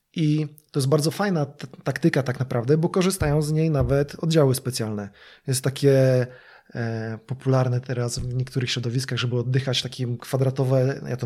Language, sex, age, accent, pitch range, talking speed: Polish, male, 20-39, native, 130-160 Hz, 160 wpm